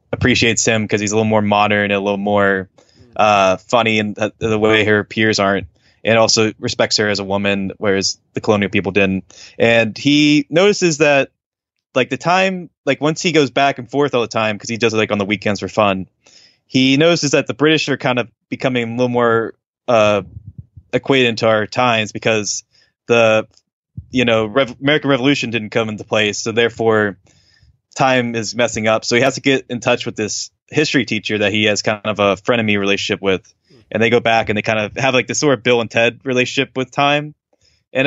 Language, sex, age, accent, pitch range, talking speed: English, male, 20-39, American, 105-130 Hz, 210 wpm